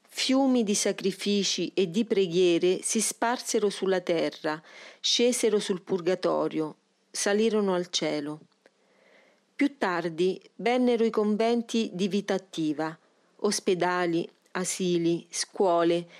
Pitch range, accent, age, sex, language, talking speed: 175-215 Hz, native, 40-59, female, Italian, 100 wpm